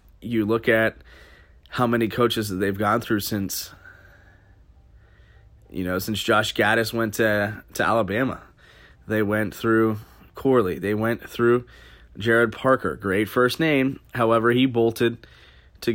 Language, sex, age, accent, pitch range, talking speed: English, male, 20-39, American, 105-125 Hz, 135 wpm